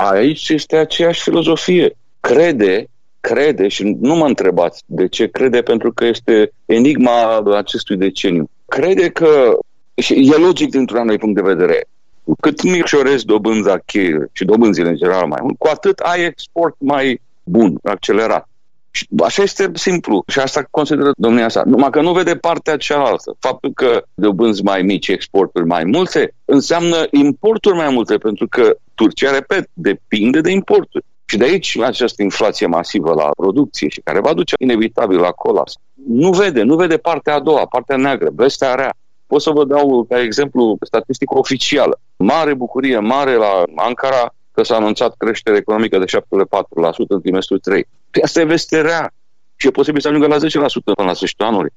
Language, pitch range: Romanian, 120-195 Hz